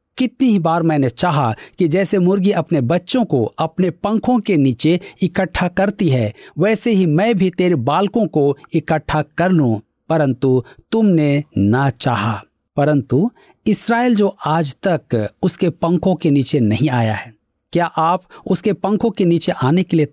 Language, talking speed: Hindi, 65 wpm